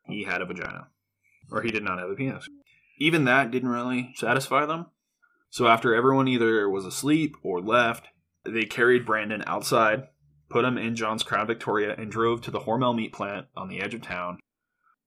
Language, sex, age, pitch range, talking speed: English, male, 20-39, 110-130 Hz, 185 wpm